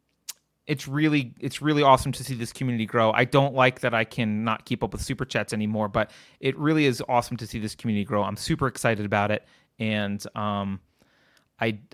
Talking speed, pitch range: 205 wpm, 115-150 Hz